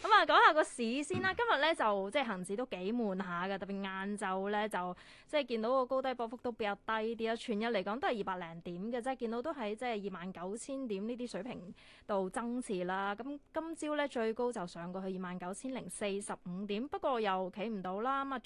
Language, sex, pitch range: Chinese, female, 195-255 Hz